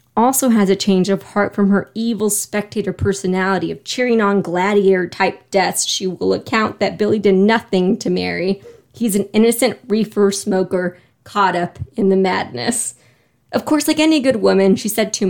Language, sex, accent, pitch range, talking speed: English, female, American, 190-230 Hz, 175 wpm